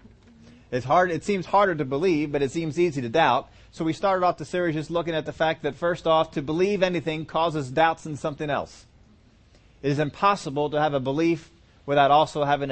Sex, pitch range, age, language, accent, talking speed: male, 115-160 Hz, 30-49, English, American, 210 wpm